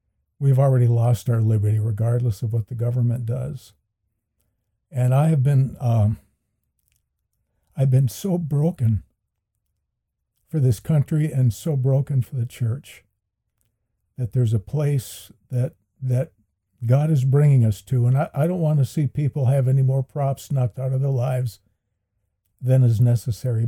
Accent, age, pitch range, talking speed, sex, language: American, 60-79, 105-130 Hz, 150 wpm, male, English